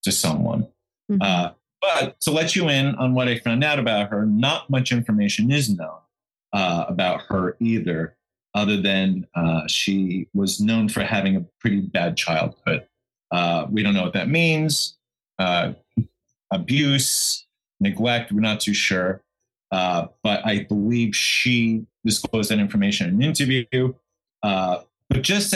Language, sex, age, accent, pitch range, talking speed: English, male, 30-49, American, 105-130 Hz, 150 wpm